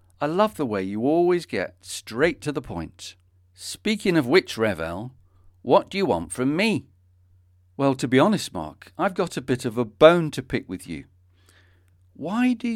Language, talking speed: English, 185 wpm